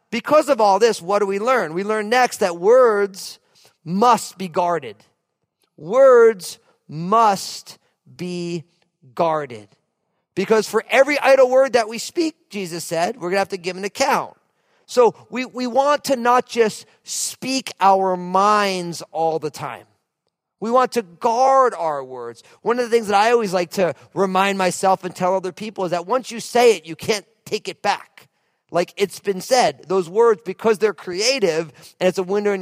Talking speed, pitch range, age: 180 wpm, 180-245 Hz, 40-59